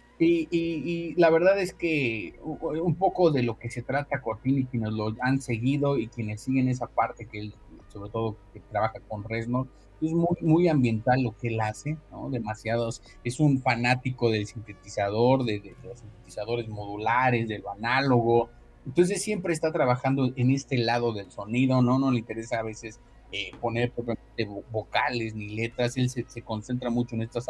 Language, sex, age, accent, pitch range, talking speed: Spanish, male, 30-49, Mexican, 110-135 Hz, 185 wpm